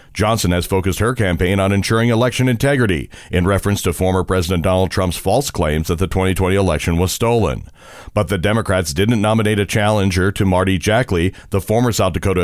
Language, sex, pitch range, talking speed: English, male, 90-110 Hz, 185 wpm